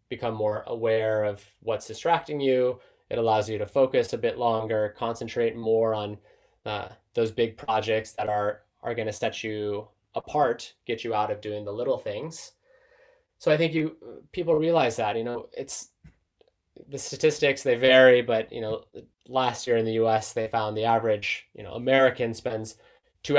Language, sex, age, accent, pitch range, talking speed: English, male, 20-39, American, 110-140 Hz, 175 wpm